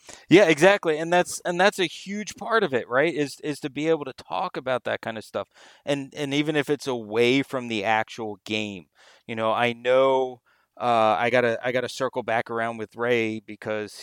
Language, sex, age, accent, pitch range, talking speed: English, male, 30-49, American, 105-130 Hz, 210 wpm